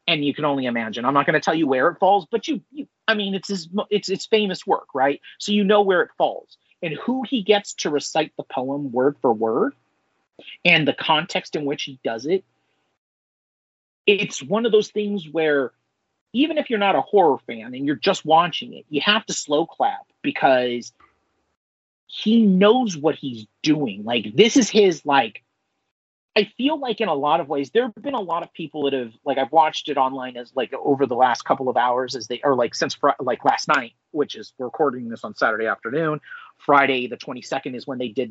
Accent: American